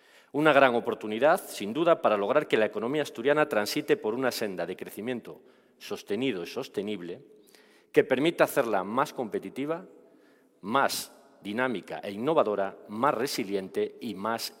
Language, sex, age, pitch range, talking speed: Spanish, male, 40-59, 115-155 Hz, 135 wpm